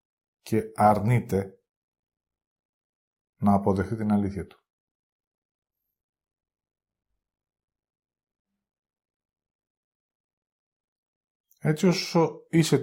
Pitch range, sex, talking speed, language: 95-120 Hz, male, 45 wpm, Greek